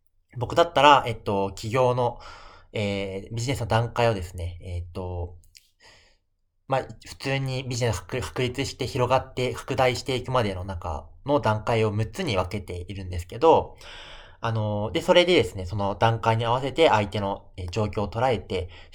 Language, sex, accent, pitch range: Japanese, male, native, 95-125 Hz